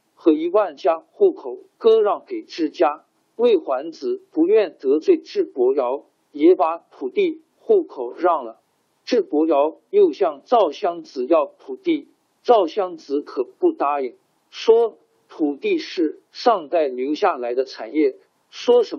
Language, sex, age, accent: Chinese, male, 50-69, native